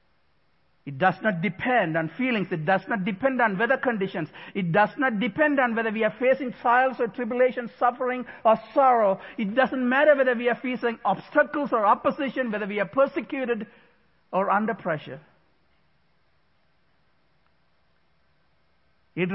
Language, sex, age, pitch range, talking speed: English, male, 60-79, 155-235 Hz, 145 wpm